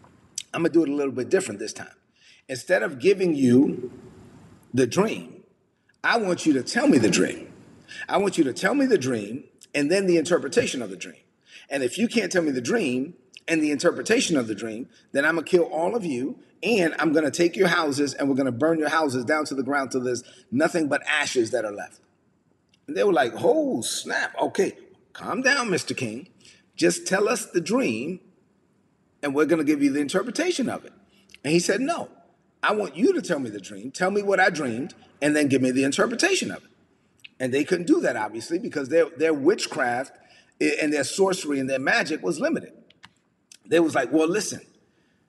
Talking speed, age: 215 wpm, 40-59